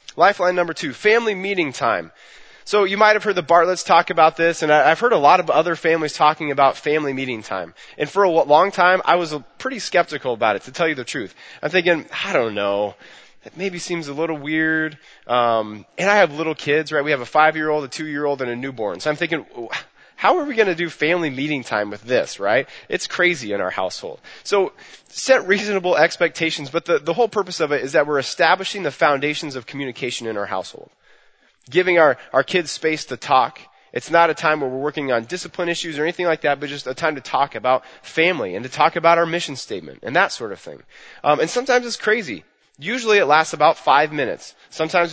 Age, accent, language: 20-39, American, English